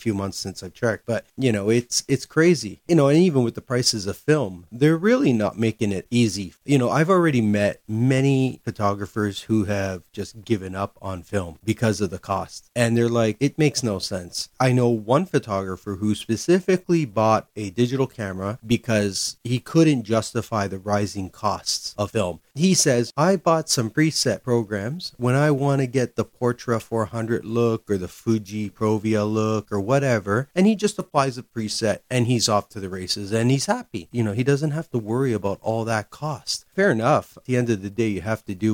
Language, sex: English, male